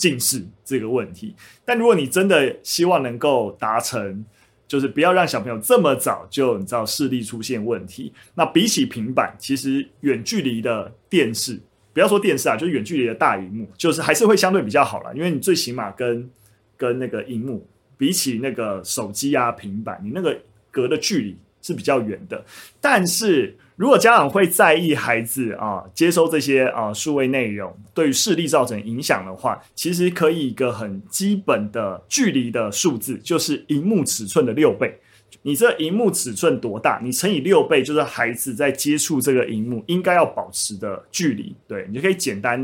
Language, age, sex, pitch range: Chinese, 20-39, male, 115-165 Hz